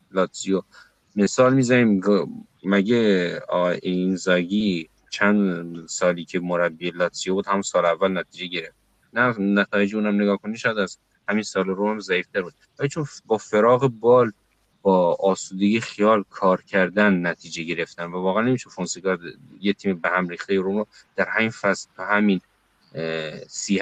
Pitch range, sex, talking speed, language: 90-105 Hz, male, 145 wpm, Persian